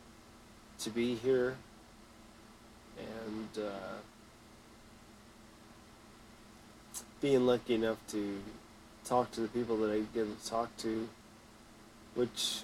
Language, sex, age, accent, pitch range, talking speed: English, male, 30-49, American, 110-115 Hz, 95 wpm